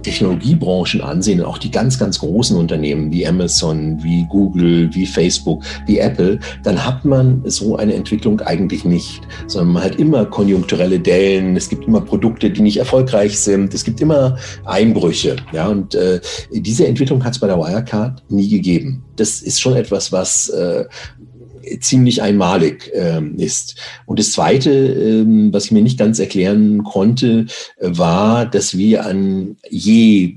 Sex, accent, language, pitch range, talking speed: male, German, German, 90-115 Hz, 160 wpm